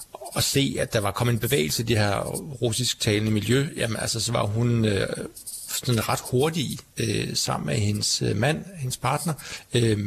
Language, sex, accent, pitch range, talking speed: Danish, male, native, 110-130 Hz, 190 wpm